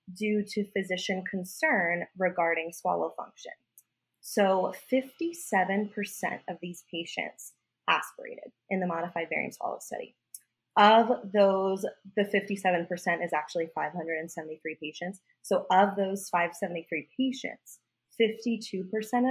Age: 20-39